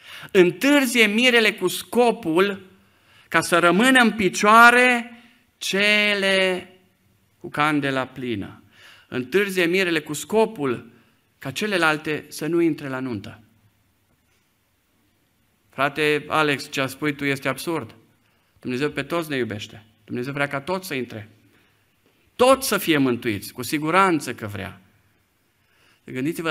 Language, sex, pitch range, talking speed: Romanian, male, 115-175 Hz, 120 wpm